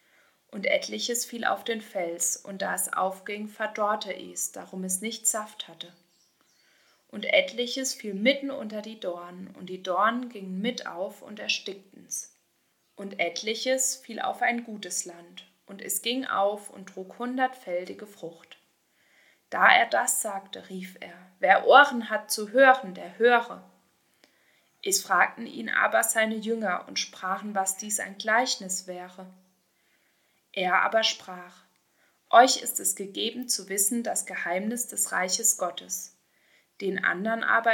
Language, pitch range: German, 185-235 Hz